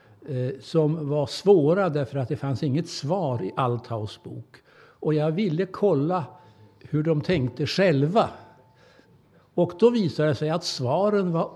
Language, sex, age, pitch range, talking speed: Danish, male, 60-79, 130-175 Hz, 145 wpm